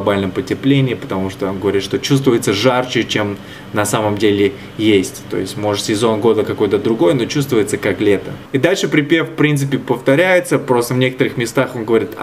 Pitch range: 105-135 Hz